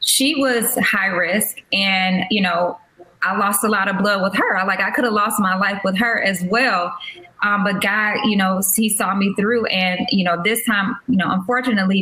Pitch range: 195-225 Hz